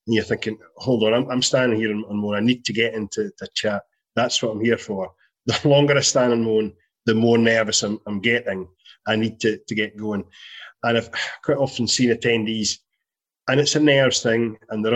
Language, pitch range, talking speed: English, 105-125 Hz, 210 wpm